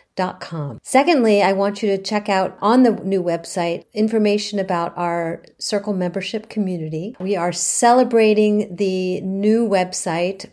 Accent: American